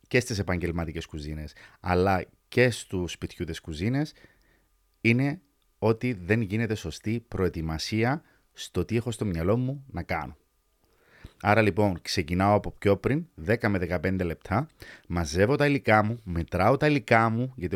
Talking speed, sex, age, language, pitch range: 140 wpm, male, 30-49, Greek, 90-125 Hz